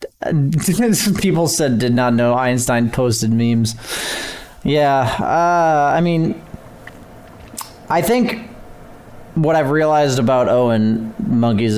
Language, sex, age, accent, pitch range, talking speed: English, male, 30-49, American, 120-180 Hz, 100 wpm